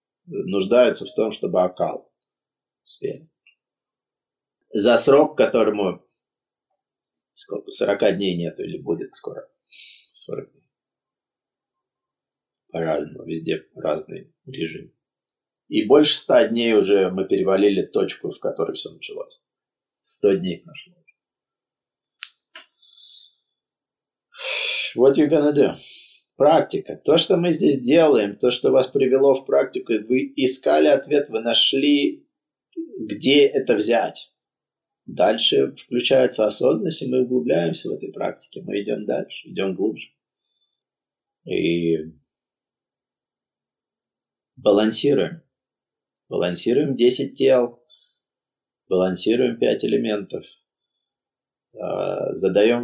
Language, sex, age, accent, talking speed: Russian, male, 30-49, native, 90 wpm